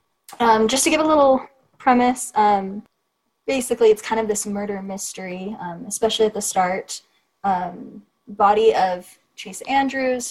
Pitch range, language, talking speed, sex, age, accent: 190-230 Hz, English, 145 wpm, female, 20-39, American